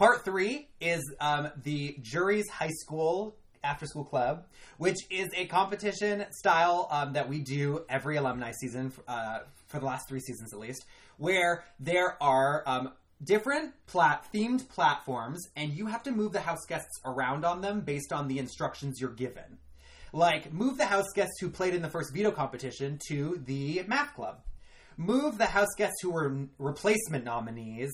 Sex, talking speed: male, 170 wpm